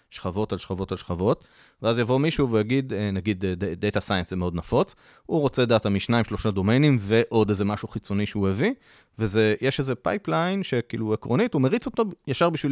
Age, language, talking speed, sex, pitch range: 30-49, Hebrew, 175 wpm, male, 95-130 Hz